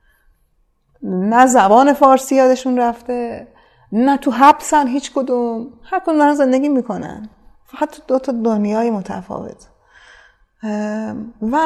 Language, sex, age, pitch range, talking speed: Persian, female, 30-49, 195-275 Hz, 105 wpm